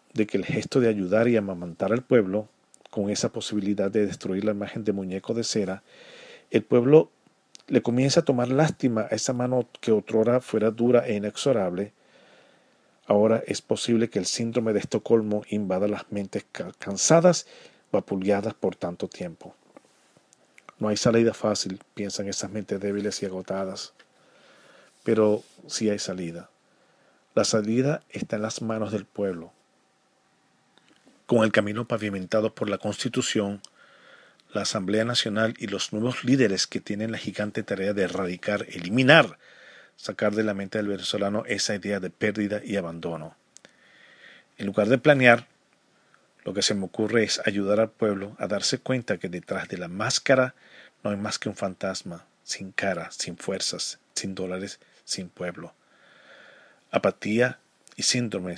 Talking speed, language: 150 wpm, English